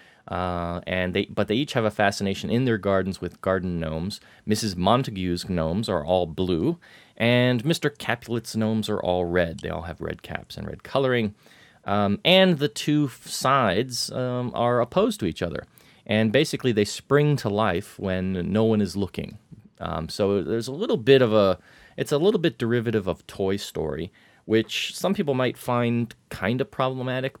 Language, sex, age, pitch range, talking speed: English, male, 30-49, 90-120 Hz, 180 wpm